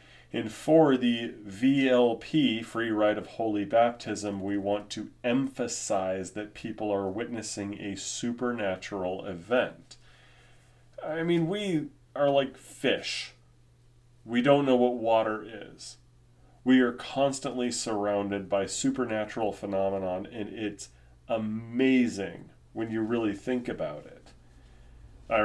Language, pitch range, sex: English, 105-125 Hz, male